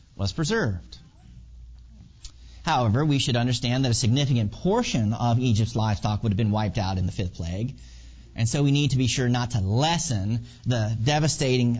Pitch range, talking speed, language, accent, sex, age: 100-155 Hz, 175 wpm, English, American, male, 40-59